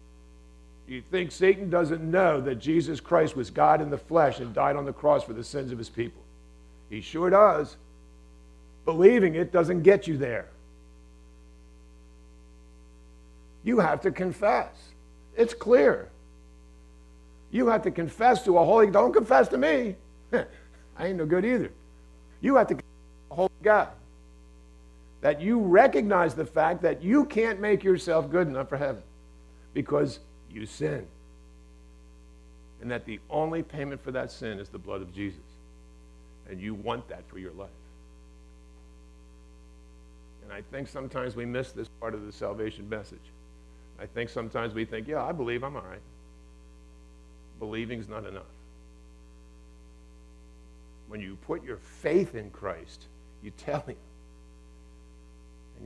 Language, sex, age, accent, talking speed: English, male, 50-69, American, 145 wpm